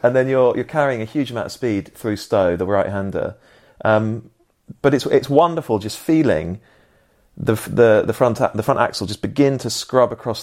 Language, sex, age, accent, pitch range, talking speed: English, male, 30-49, British, 100-120 Hz, 200 wpm